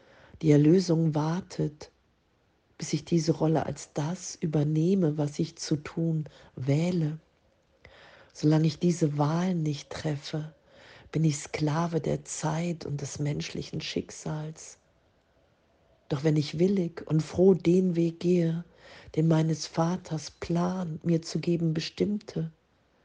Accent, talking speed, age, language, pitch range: German, 120 wpm, 50-69, German, 145-165 Hz